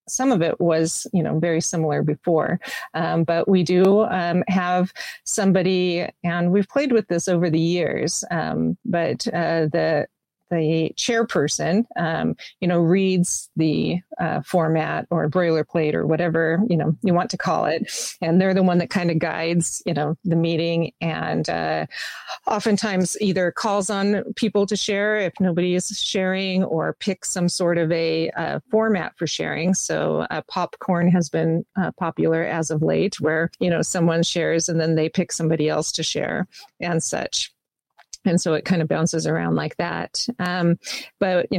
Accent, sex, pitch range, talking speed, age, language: American, female, 165-190 Hz, 175 wpm, 40-59, English